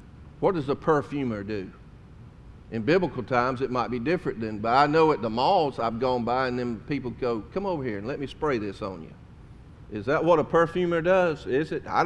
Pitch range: 120-170 Hz